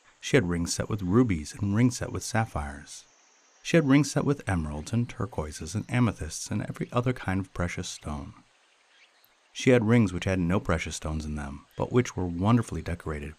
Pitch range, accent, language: 80-120 Hz, American, English